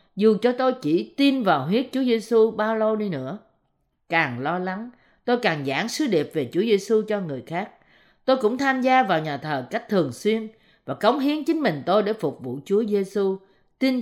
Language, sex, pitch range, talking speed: Vietnamese, female, 170-245 Hz, 210 wpm